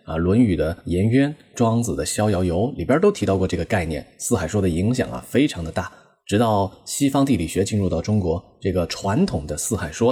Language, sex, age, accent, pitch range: Chinese, male, 20-39, native, 90-120 Hz